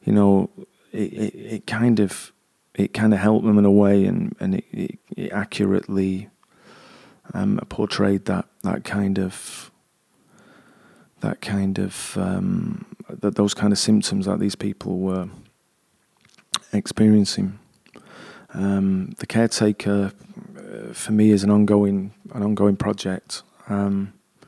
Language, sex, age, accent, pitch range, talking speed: English, male, 30-49, British, 95-105 Hz, 130 wpm